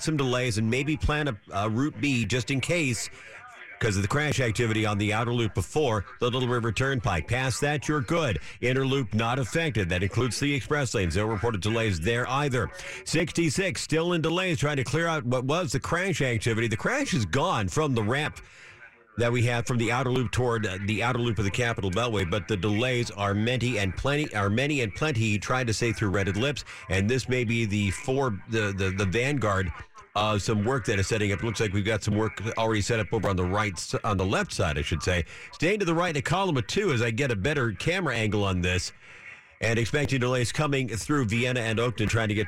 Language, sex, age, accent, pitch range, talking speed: English, male, 50-69, American, 110-135 Hz, 230 wpm